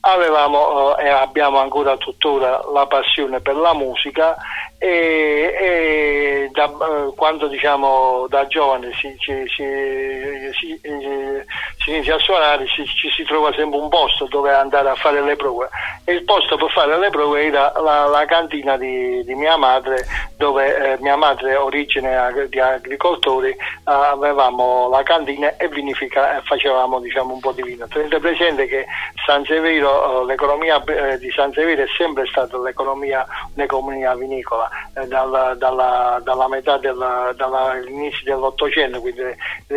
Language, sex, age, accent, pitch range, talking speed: Italian, male, 50-69, native, 135-145 Hz, 145 wpm